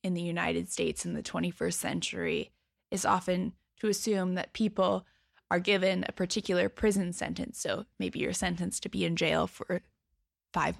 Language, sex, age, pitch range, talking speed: English, female, 10-29, 165-205 Hz, 165 wpm